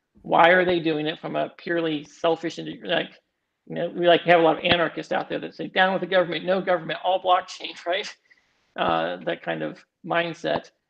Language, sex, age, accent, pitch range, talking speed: English, male, 40-59, American, 160-190 Hz, 210 wpm